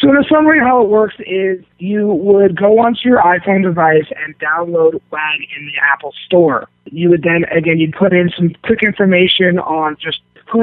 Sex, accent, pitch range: male, American, 160-185 Hz